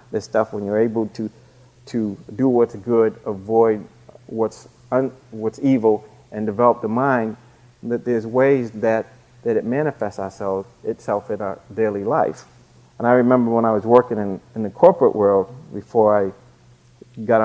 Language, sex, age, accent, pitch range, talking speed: English, male, 40-59, American, 105-125 Hz, 160 wpm